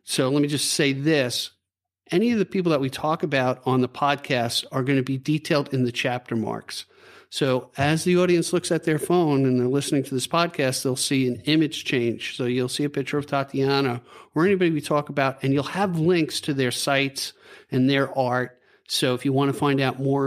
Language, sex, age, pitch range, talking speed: English, male, 50-69, 130-155 Hz, 220 wpm